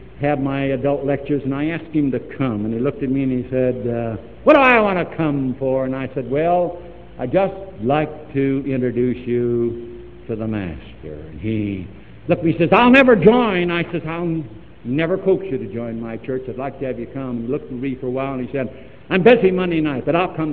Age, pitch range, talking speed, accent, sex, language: 70-89, 105-140 Hz, 240 wpm, American, male, English